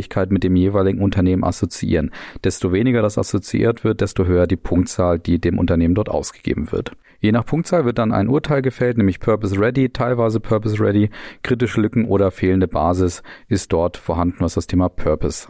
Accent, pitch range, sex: German, 95-120 Hz, male